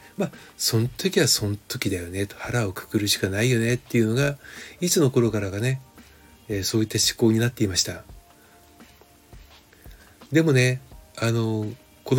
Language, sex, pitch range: Japanese, male, 95-120 Hz